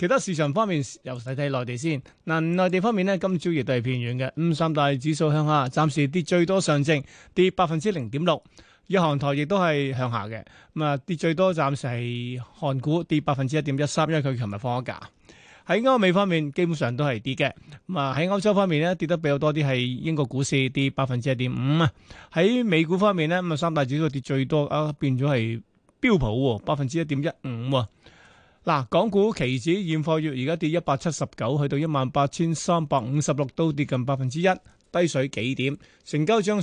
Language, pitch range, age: Chinese, 135-170 Hz, 20-39